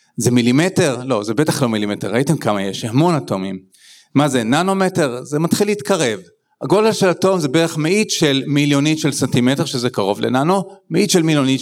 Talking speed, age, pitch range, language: 175 wpm, 40-59, 140-190 Hz, Hebrew